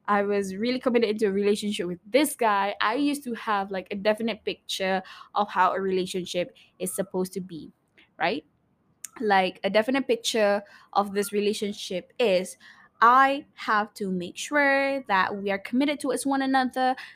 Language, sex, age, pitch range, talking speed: Malay, female, 10-29, 195-255 Hz, 170 wpm